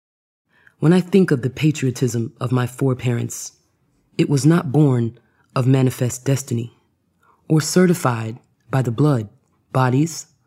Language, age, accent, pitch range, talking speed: English, 20-39, American, 120-150 Hz, 125 wpm